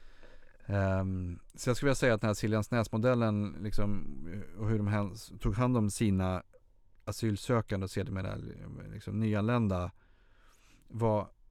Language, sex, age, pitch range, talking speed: Swedish, male, 30-49, 95-115 Hz, 125 wpm